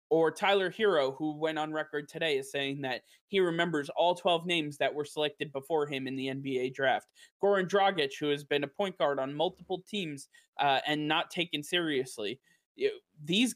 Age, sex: 20-39, male